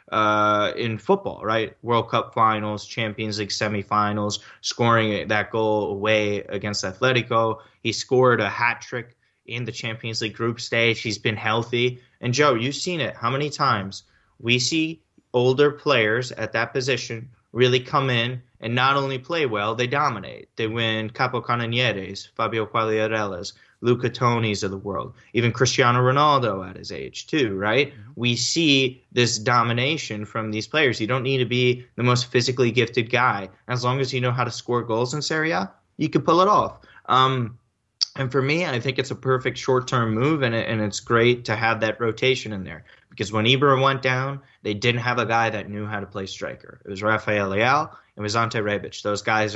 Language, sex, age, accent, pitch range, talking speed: English, male, 20-39, American, 110-130 Hz, 190 wpm